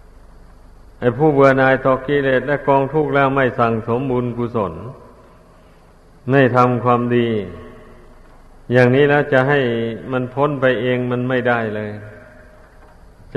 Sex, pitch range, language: male, 105-130 Hz, Thai